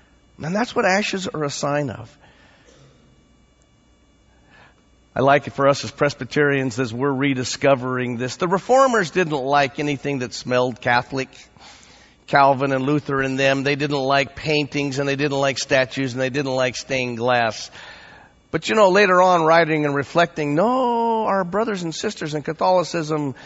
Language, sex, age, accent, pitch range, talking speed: English, male, 50-69, American, 130-165 Hz, 160 wpm